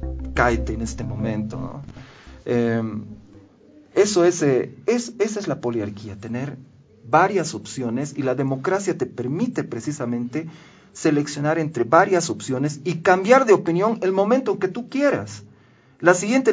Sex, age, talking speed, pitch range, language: male, 40-59, 130 wpm, 120-170 Hz, Spanish